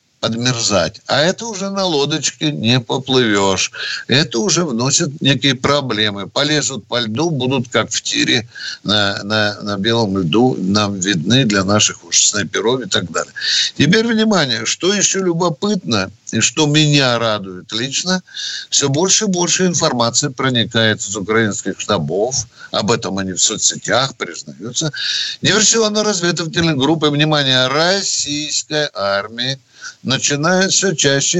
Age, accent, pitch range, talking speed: 60-79, native, 110-155 Hz, 130 wpm